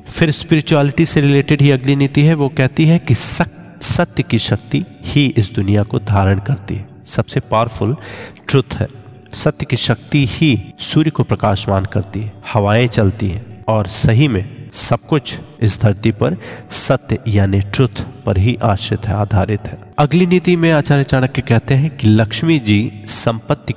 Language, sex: Hindi, male